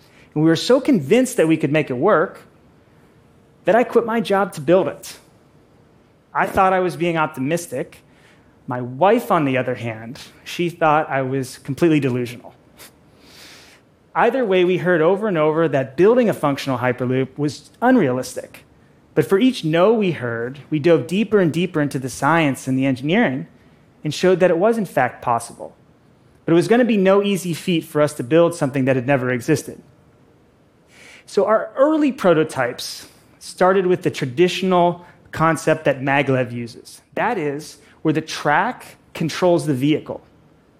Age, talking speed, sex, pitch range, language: 30-49, 170 wpm, male, 140-190 Hz, Arabic